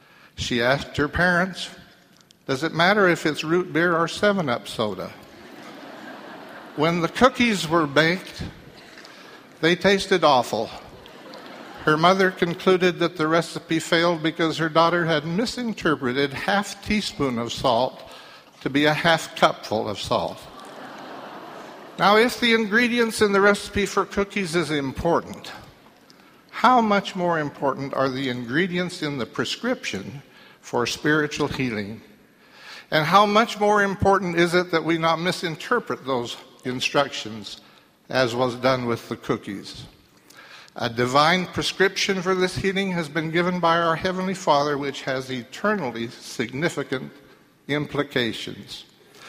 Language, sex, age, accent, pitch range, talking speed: English, male, 60-79, American, 145-190 Hz, 130 wpm